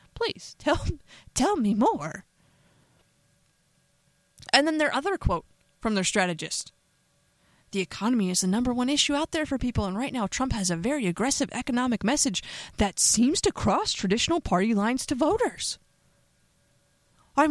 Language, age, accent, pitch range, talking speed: English, 20-39, American, 230-335 Hz, 150 wpm